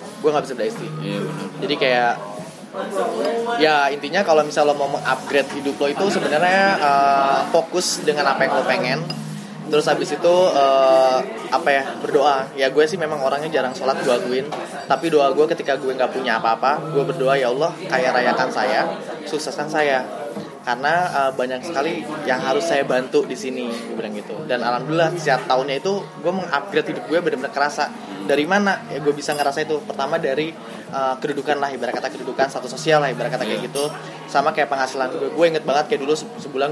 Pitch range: 125-155 Hz